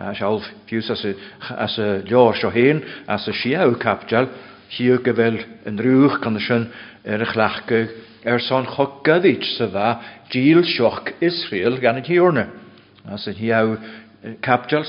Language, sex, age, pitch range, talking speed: English, male, 60-79, 105-130 Hz, 125 wpm